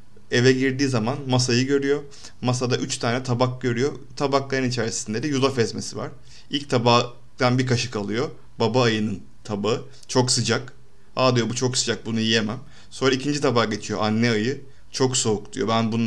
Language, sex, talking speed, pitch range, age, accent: Turkish, male, 165 wpm, 120-140 Hz, 30-49, native